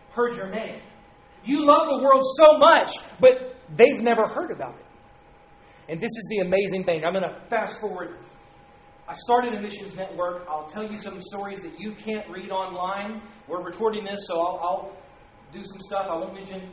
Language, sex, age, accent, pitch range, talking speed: English, male, 40-59, American, 175-220 Hz, 190 wpm